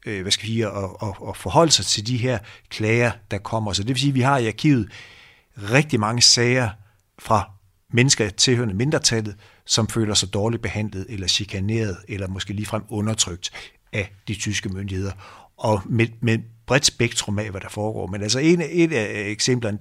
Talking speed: 165 wpm